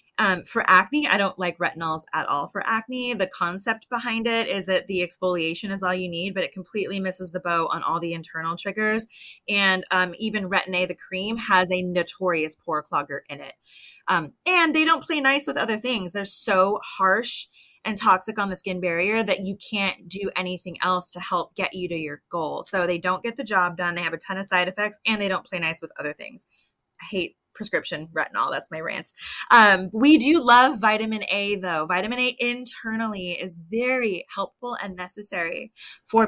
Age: 20-39